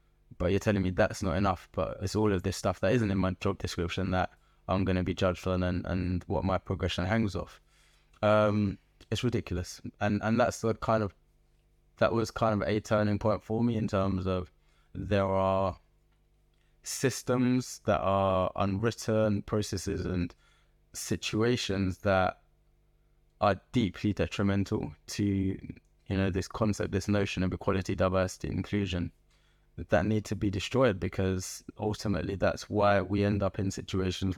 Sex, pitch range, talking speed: male, 90-105 Hz, 160 wpm